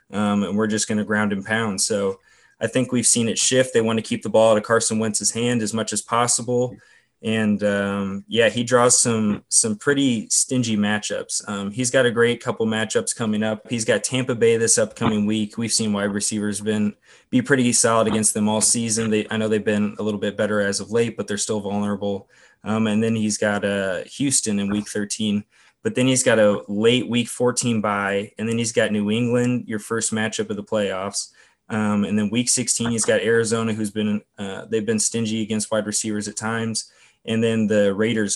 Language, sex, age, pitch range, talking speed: English, male, 20-39, 105-115 Hz, 215 wpm